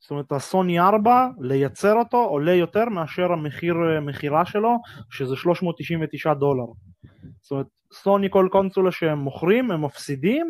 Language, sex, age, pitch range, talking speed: Hebrew, male, 20-39, 140-175 Hz, 135 wpm